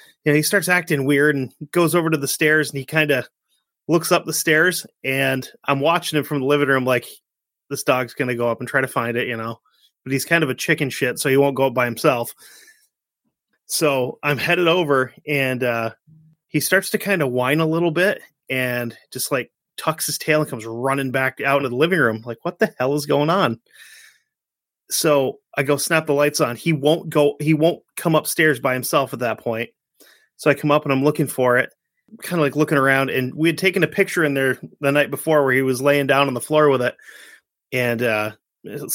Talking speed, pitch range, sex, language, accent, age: 230 wpm, 130-165 Hz, male, English, American, 30-49